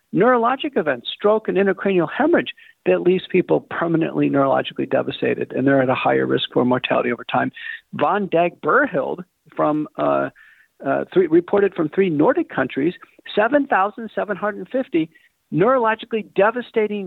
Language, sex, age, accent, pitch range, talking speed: English, male, 50-69, American, 150-225 Hz, 125 wpm